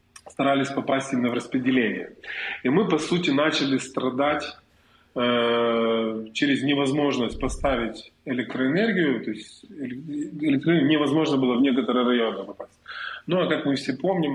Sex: male